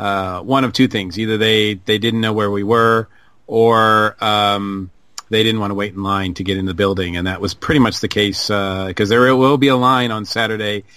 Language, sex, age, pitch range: English, male, 40-59, 105-130 Hz